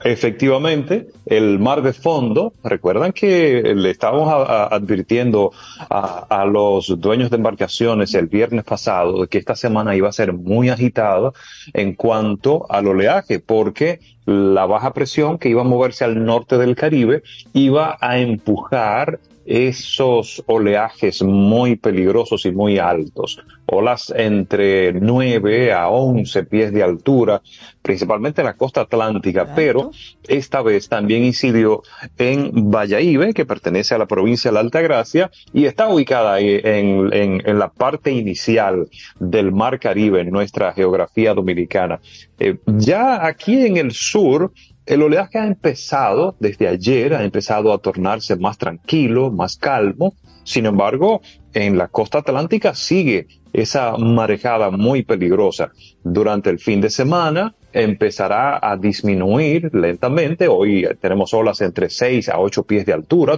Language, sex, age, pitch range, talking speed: Spanish, male, 30-49, 105-135 Hz, 145 wpm